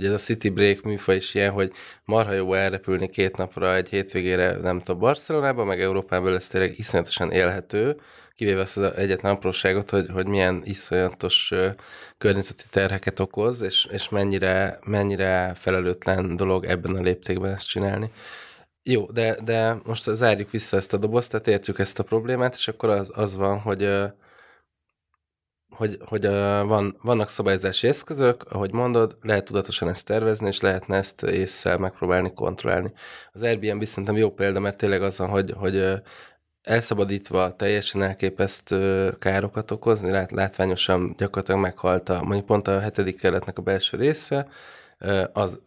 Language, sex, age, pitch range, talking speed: Hungarian, male, 20-39, 95-105 Hz, 150 wpm